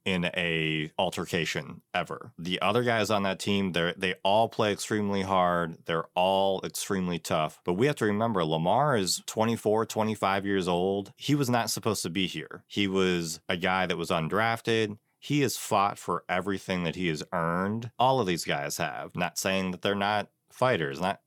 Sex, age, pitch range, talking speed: male, 30-49, 85-105 Hz, 190 wpm